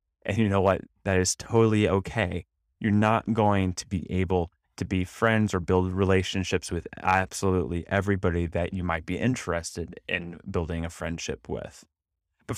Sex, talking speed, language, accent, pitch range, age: male, 160 wpm, English, American, 85-105 Hz, 20-39